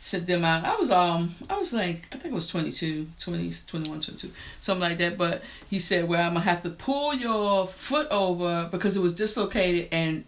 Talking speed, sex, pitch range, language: 230 wpm, female, 175-265 Hz, English